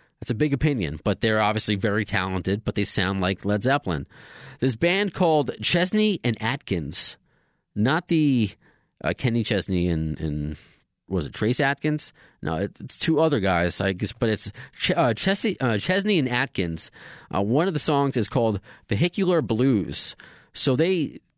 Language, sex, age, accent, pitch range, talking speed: English, male, 30-49, American, 105-140 Hz, 165 wpm